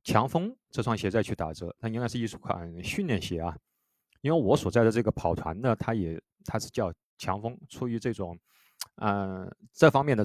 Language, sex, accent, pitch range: Chinese, male, native, 100-130 Hz